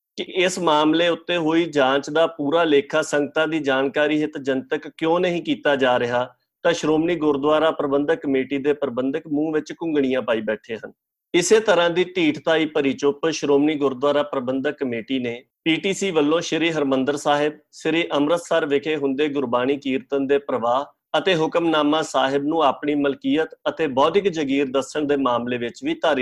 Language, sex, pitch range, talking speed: Punjabi, male, 135-160 Hz, 90 wpm